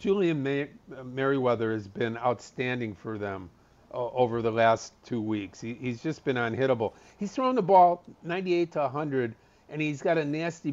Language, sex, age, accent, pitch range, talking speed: English, male, 50-69, American, 115-145 Hz, 160 wpm